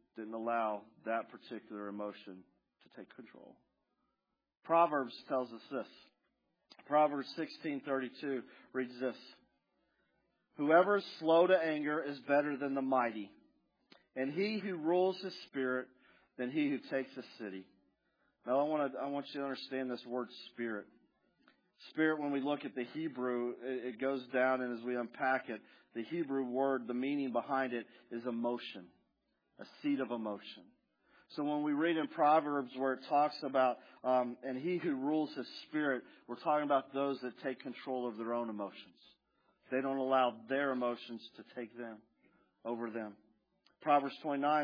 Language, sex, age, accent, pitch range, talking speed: English, male, 40-59, American, 125-150 Hz, 160 wpm